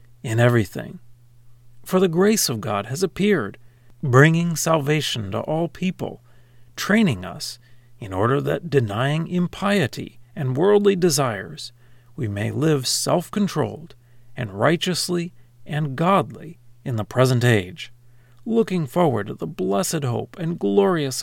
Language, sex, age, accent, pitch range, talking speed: English, male, 40-59, American, 120-160 Hz, 125 wpm